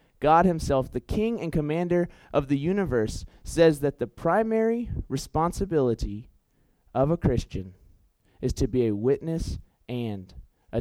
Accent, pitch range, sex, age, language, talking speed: American, 105-160 Hz, male, 30-49, English, 135 wpm